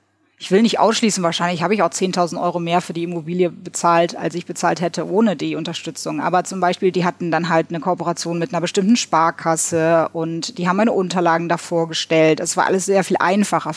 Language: German